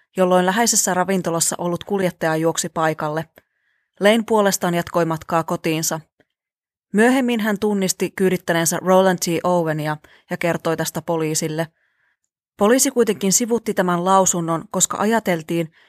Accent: native